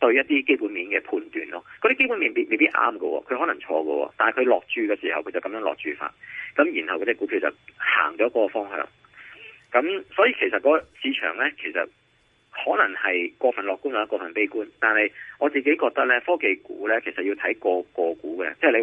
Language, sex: Chinese, male